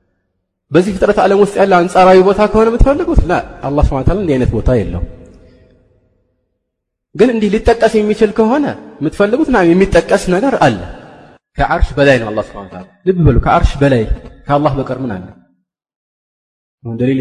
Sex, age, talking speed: male, 30-49, 135 wpm